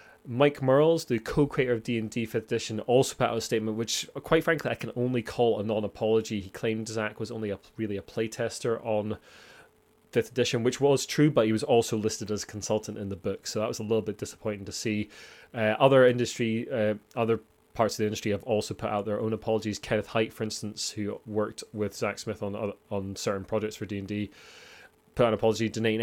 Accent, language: British, English